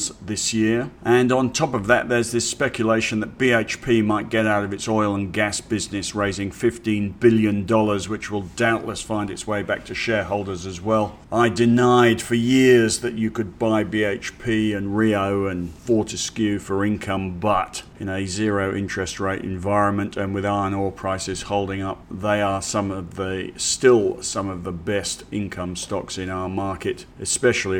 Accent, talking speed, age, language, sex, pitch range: British, 175 wpm, 40-59, English, male, 100-120 Hz